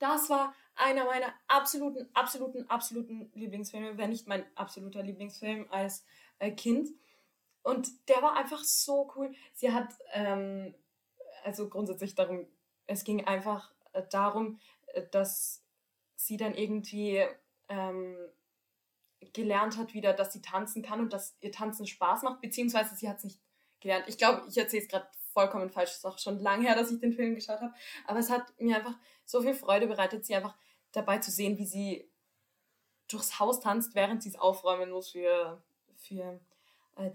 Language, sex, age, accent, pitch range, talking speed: English, female, 20-39, German, 195-235 Hz, 165 wpm